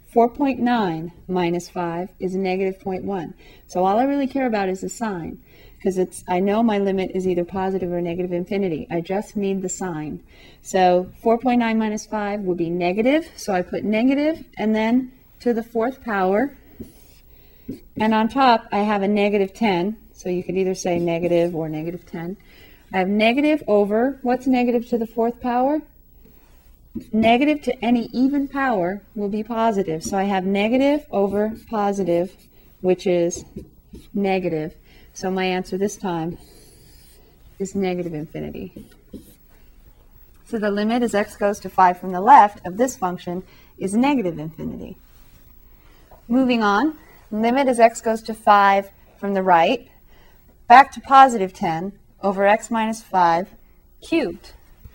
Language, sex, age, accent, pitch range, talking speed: English, female, 40-59, American, 185-230 Hz, 150 wpm